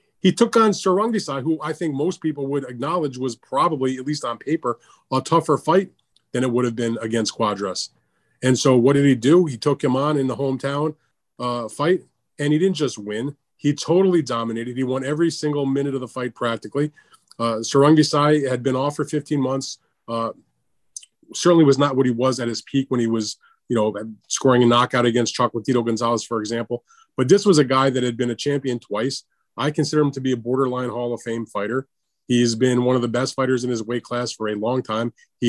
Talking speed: 215 wpm